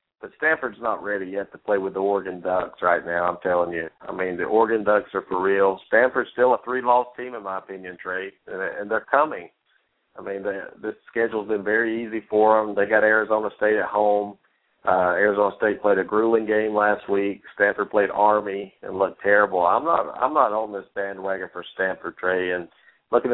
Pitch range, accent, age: 100-115 Hz, American, 50-69